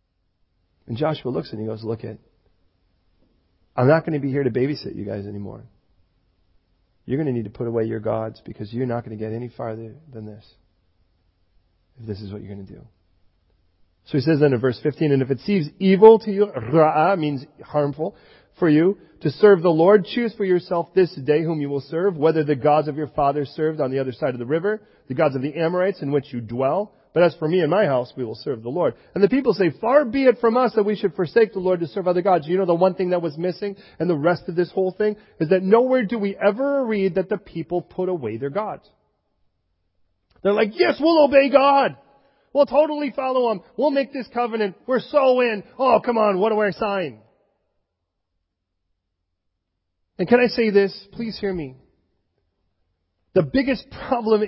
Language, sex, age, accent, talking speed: English, male, 40-59, American, 215 wpm